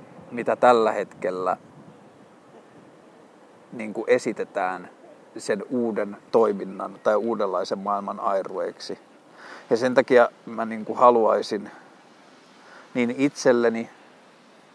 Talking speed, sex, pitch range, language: 75 wpm, male, 115-145 Hz, Finnish